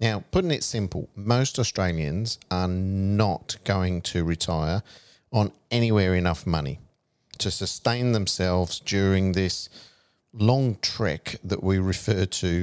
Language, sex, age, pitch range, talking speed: English, male, 50-69, 90-115 Hz, 125 wpm